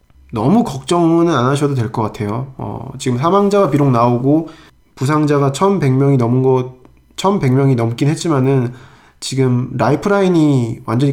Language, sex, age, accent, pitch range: Korean, male, 20-39, native, 115-150 Hz